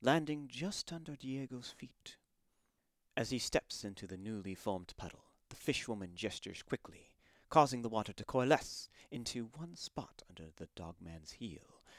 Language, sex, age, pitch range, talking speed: English, male, 30-49, 90-130 Hz, 145 wpm